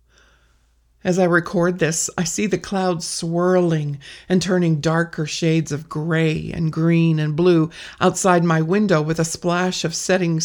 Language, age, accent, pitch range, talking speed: English, 50-69, American, 155-185 Hz, 155 wpm